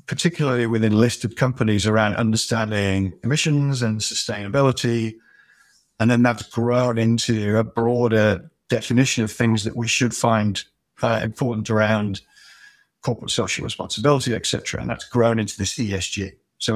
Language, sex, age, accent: English, male, 50-69, British